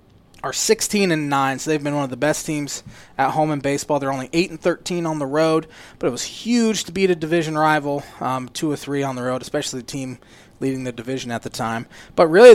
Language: English